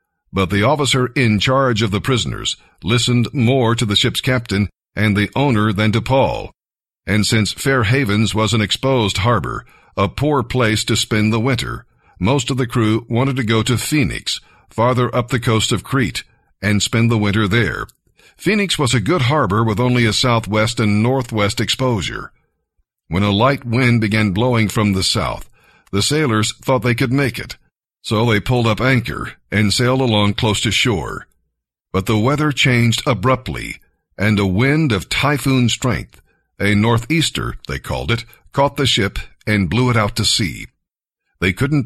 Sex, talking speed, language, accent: male, 175 wpm, English, American